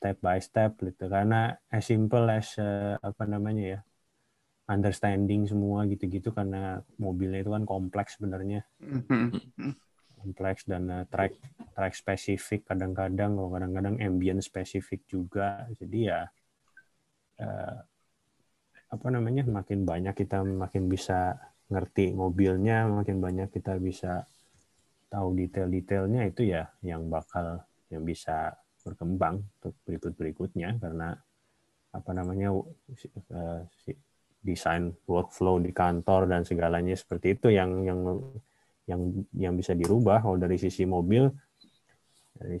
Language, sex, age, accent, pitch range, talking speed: Indonesian, male, 20-39, native, 90-105 Hz, 125 wpm